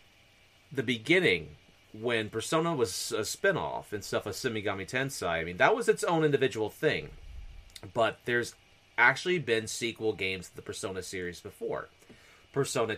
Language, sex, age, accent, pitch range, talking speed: English, male, 30-49, American, 100-135 Hz, 150 wpm